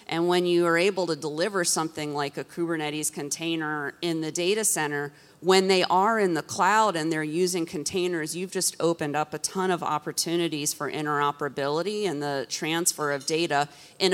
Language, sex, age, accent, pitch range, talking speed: English, female, 30-49, American, 150-175 Hz, 180 wpm